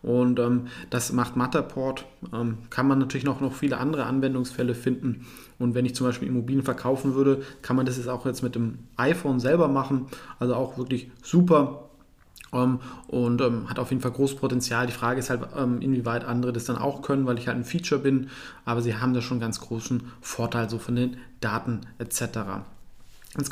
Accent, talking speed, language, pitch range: German, 200 wpm, German, 120-140 Hz